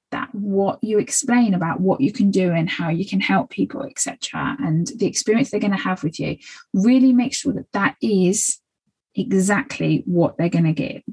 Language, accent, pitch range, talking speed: English, British, 170-240 Hz, 195 wpm